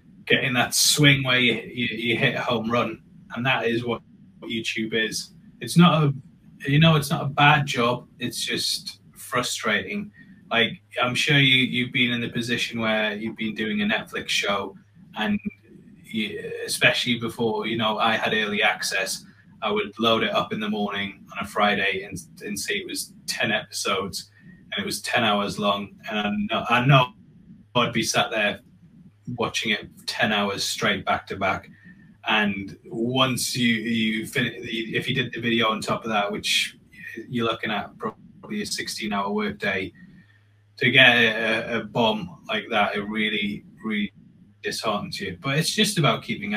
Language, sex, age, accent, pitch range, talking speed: English, male, 20-39, British, 105-145 Hz, 175 wpm